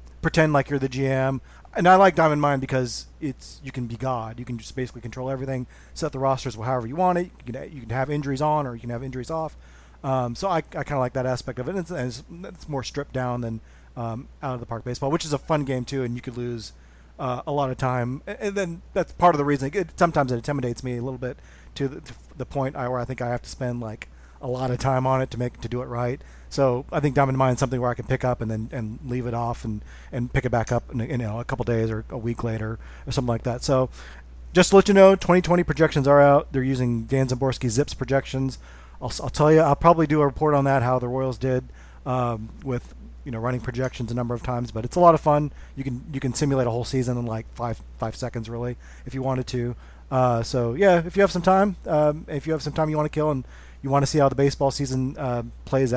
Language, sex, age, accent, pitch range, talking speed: English, male, 40-59, American, 120-145 Hz, 275 wpm